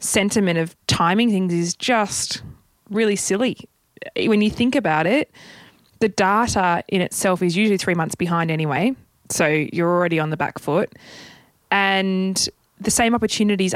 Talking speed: 150 wpm